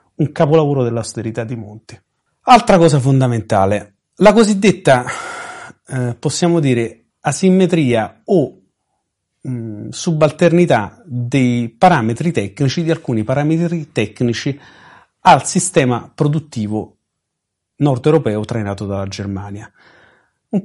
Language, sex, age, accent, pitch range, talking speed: Italian, male, 40-59, native, 120-165 Hz, 90 wpm